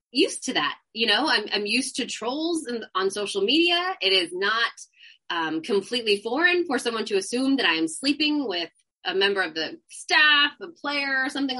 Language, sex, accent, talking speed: English, female, American, 200 wpm